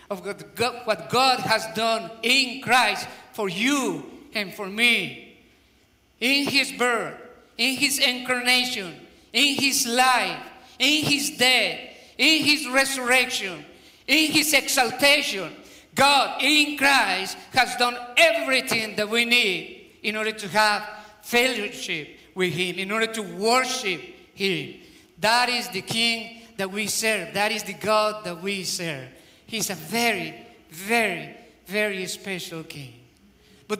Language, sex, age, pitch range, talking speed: English, male, 50-69, 210-275 Hz, 130 wpm